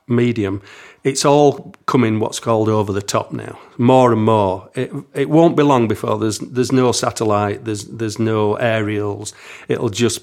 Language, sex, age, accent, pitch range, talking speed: English, male, 40-59, British, 105-125 Hz, 170 wpm